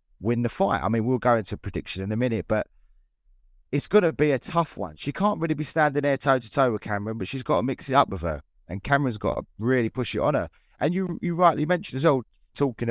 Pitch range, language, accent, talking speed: 105-145 Hz, English, British, 260 wpm